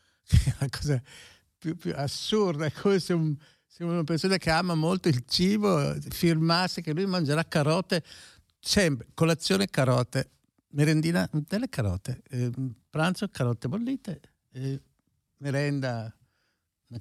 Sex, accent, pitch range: male, native, 115-175 Hz